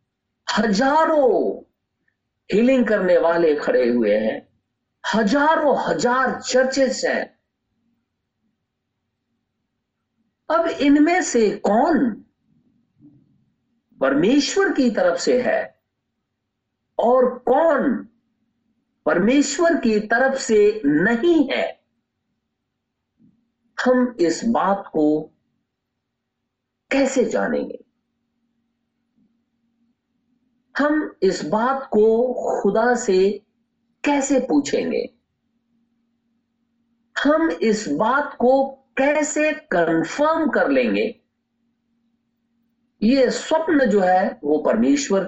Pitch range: 230-270 Hz